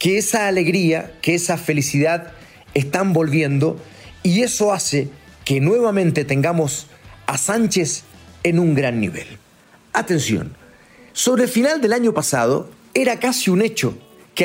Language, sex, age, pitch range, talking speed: Spanish, male, 40-59, 150-215 Hz, 135 wpm